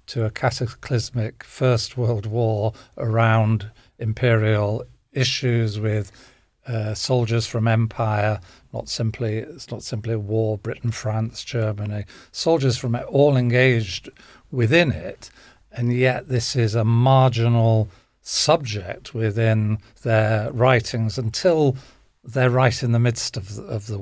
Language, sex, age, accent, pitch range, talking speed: English, male, 40-59, British, 110-130 Hz, 125 wpm